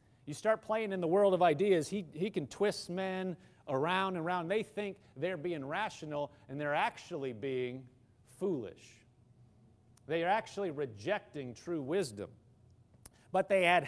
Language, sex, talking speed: English, male, 150 wpm